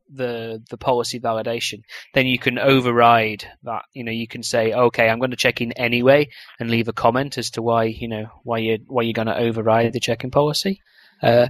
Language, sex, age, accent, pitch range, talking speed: English, male, 20-39, British, 115-135 Hz, 220 wpm